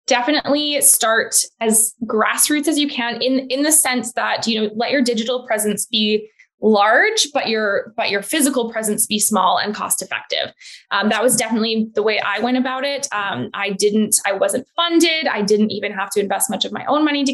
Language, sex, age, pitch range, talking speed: English, female, 20-39, 220-265 Hz, 205 wpm